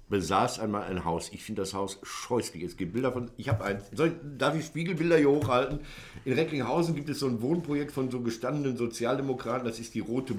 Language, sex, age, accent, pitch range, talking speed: German, male, 60-79, German, 100-135 Hz, 215 wpm